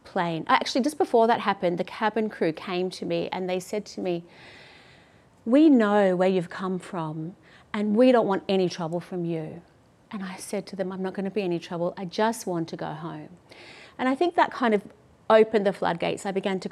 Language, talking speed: English, 215 wpm